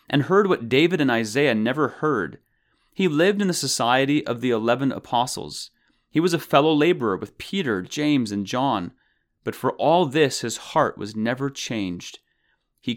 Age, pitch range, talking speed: 30-49, 115-150 Hz, 170 wpm